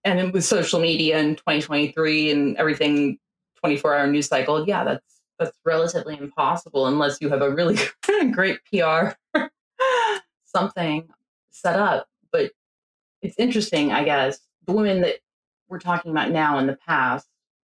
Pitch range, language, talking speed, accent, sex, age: 140-185 Hz, English, 140 wpm, American, female, 30-49